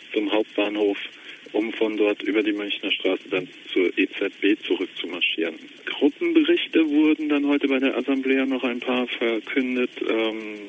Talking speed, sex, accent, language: 140 wpm, male, German, English